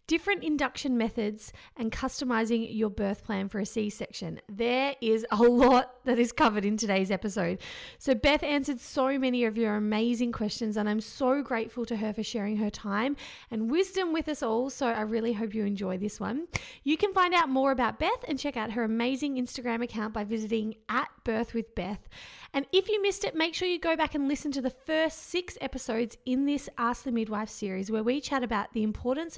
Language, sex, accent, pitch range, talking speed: English, female, Australian, 220-280 Hz, 200 wpm